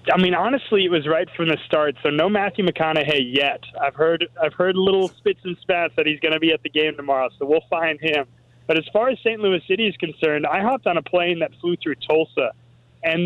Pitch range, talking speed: 140-175 Hz, 245 wpm